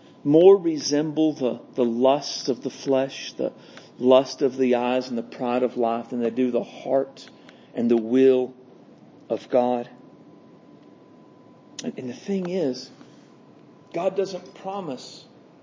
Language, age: English, 50-69